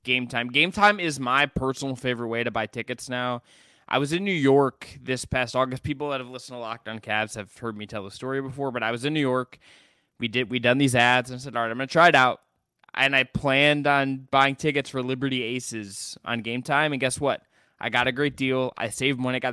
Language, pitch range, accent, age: English, 120-140 Hz, American, 20-39